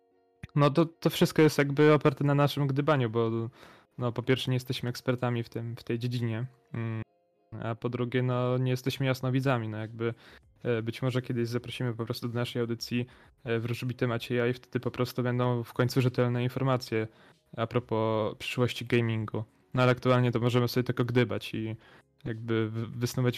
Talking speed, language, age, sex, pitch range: 175 wpm, Polish, 10-29, male, 115-130 Hz